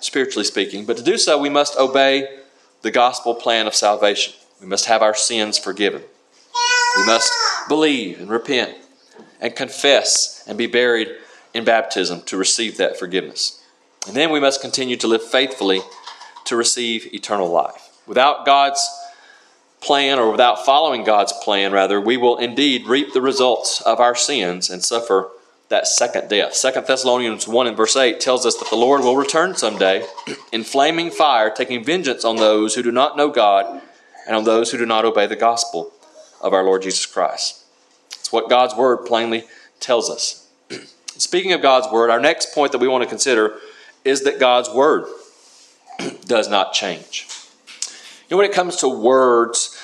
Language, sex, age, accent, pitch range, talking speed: English, male, 30-49, American, 110-145 Hz, 175 wpm